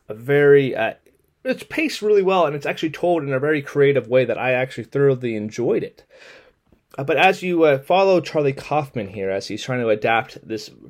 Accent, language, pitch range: American, English, 130-155 Hz